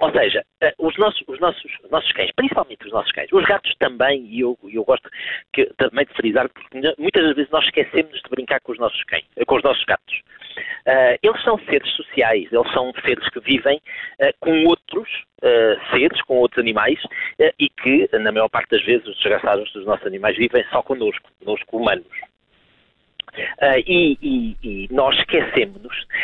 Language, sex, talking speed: Portuguese, male, 170 wpm